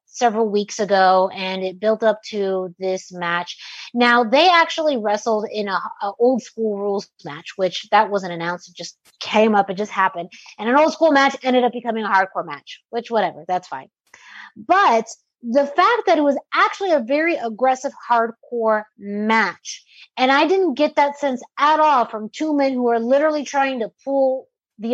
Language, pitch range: English, 205-270 Hz